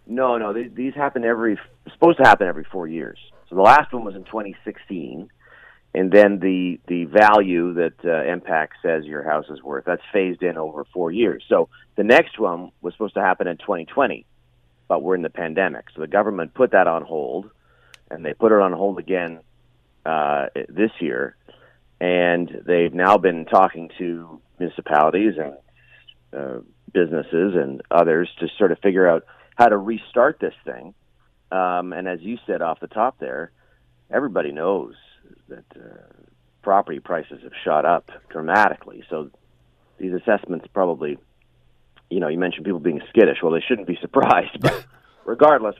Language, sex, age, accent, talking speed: English, male, 40-59, American, 170 wpm